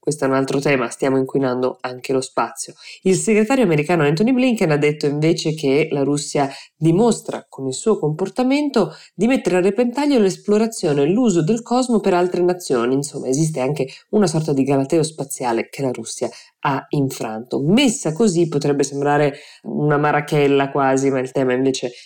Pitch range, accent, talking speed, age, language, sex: 130-165 Hz, native, 170 wpm, 20-39, Italian, female